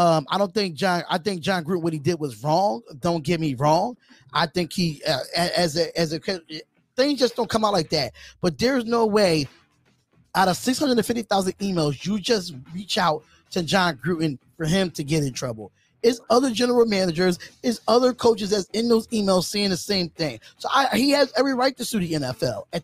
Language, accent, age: English, American, 20-39